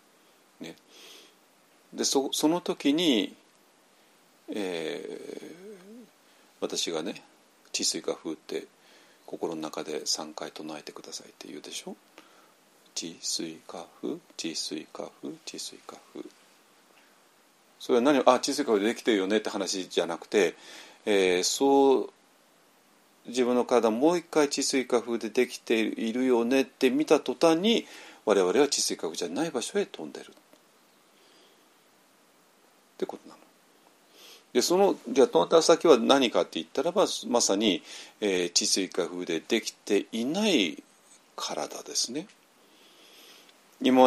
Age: 40-59